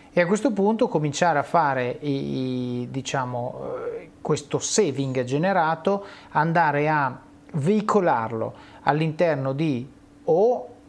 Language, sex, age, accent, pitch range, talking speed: Italian, male, 30-49, native, 125-150 Hz, 105 wpm